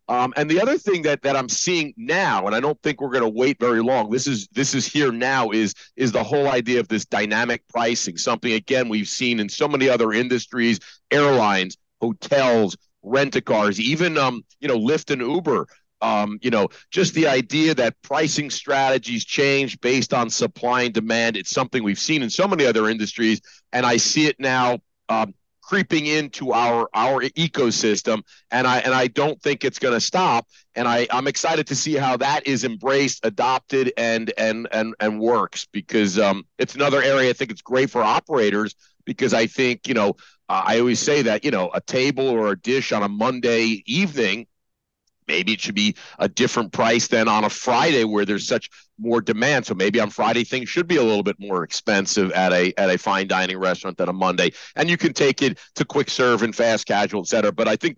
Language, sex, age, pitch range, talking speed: English, male, 40-59, 110-140 Hz, 210 wpm